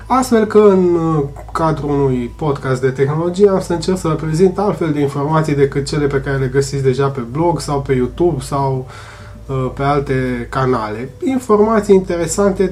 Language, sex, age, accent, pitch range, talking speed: Romanian, male, 20-39, native, 135-180 Hz, 165 wpm